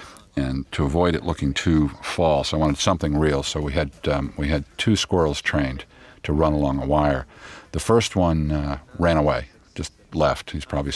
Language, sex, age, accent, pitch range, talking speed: English, male, 50-69, American, 70-85 Hz, 195 wpm